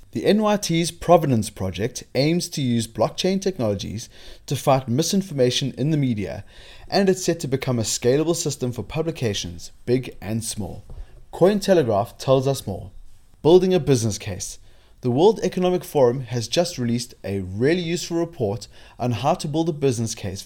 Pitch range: 105-150 Hz